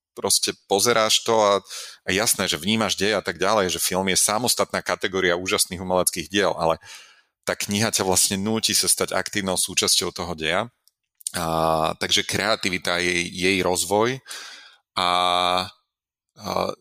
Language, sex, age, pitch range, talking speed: Slovak, male, 30-49, 85-100 Hz, 145 wpm